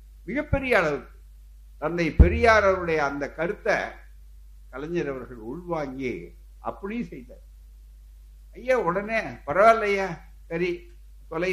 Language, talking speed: Tamil, 80 wpm